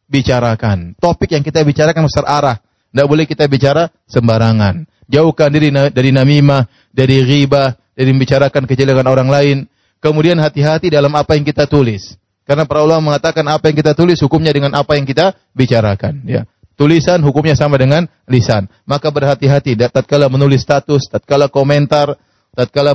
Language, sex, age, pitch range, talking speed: Indonesian, male, 30-49, 135-190 Hz, 150 wpm